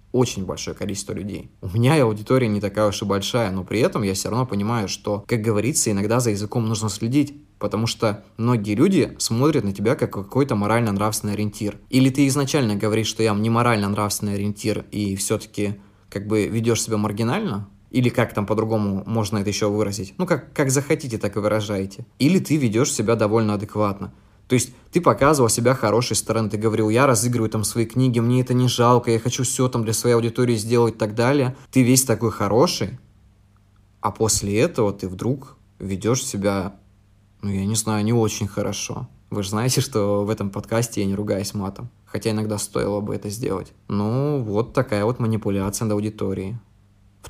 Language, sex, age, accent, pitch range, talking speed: Russian, male, 20-39, native, 100-120 Hz, 185 wpm